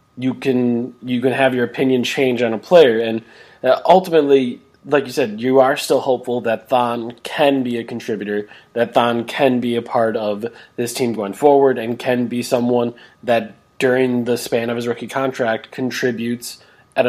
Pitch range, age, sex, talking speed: 115-135 Hz, 20-39, male, 180 wpm